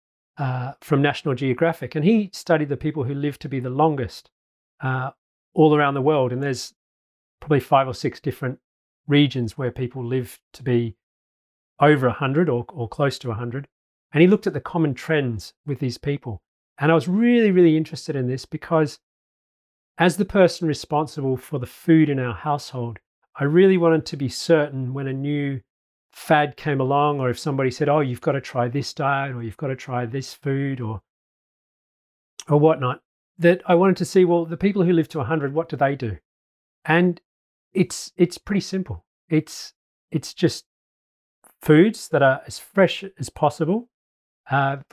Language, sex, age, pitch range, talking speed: English, male, 40-59, 130-160 Hz, 180 wpm